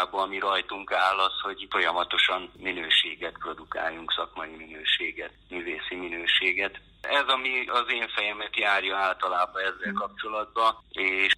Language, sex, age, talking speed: Hungarian, male, 30-49, 120 wpm